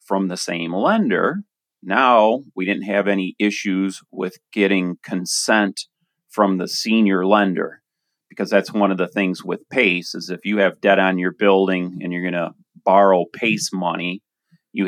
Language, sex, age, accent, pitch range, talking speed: English, male, 30-49, American, 95-105 Hz, 160 wpm